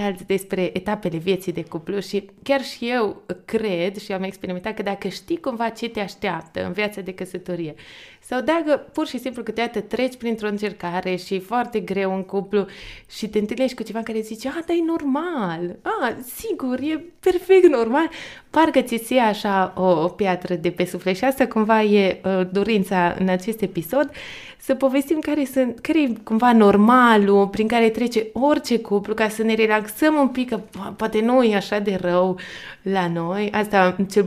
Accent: native